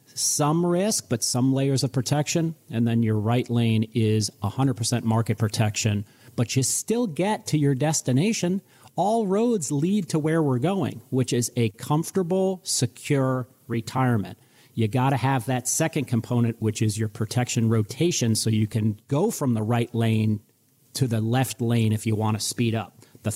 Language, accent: English, American